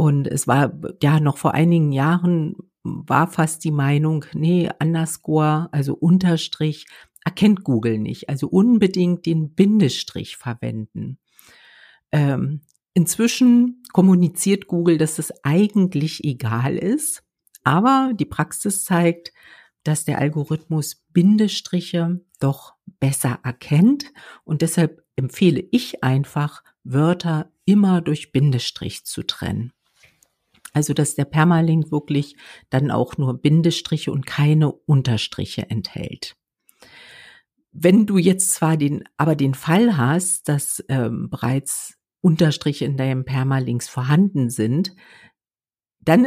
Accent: German